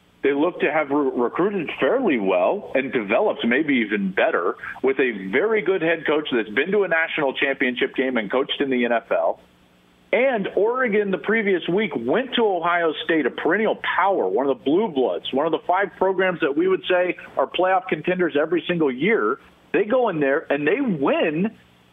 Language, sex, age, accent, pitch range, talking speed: English, male, 50-69, American, 135-210 Hz, 190 wpm